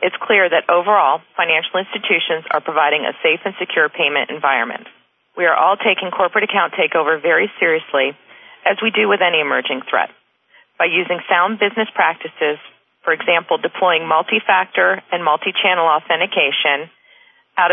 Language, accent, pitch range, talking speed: English, American, 170-220 Hz, 150 wpm